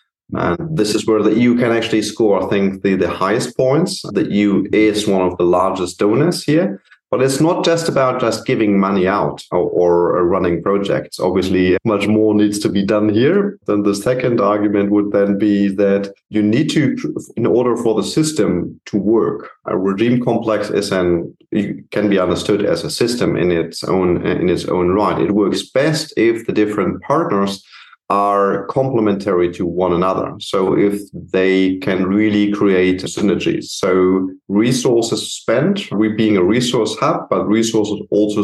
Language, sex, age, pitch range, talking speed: English, male, 30-49, 95-115 Hz, 175 wpm